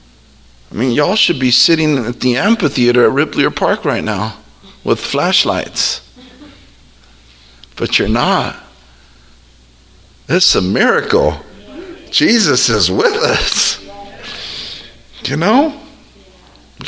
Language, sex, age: English, male, 50-69